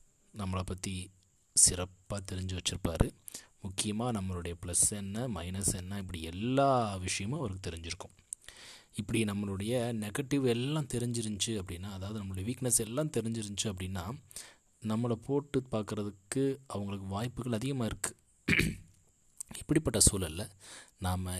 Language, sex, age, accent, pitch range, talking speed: Tamil, male, 30-49, native, 95-120 Hz, 105 wpm